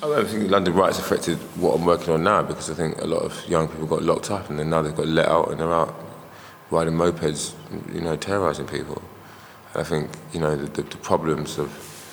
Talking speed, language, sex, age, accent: 235 wpm, English, male, 20-39, British